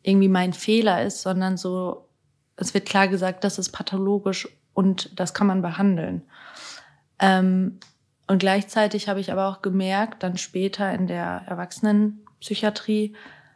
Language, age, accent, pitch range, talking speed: German, 20-39, German, 185-205 Hz, 135 wpm